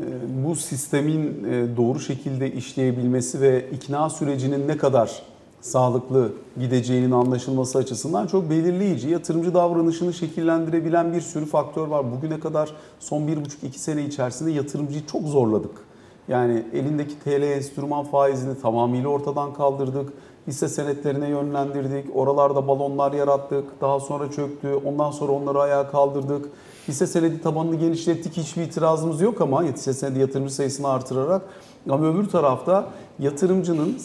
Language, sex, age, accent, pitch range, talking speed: Turkish, male, 40-59, native, 135-165 Hz, 125 wpm